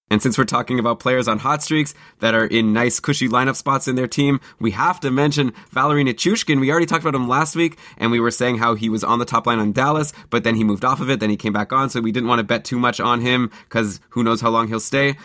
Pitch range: 110-140 Hz